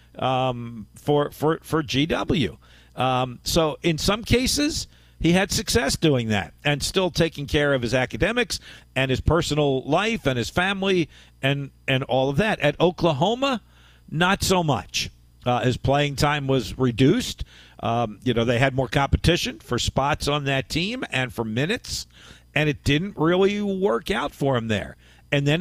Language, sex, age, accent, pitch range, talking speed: English, male, 50-69, American, 125-170 Hz, 165 wpm